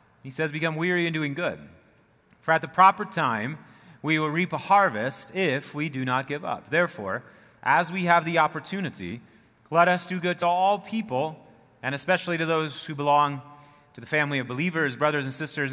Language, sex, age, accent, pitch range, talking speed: English, male, 30-49, American, 140-175 Hz, 190 wpm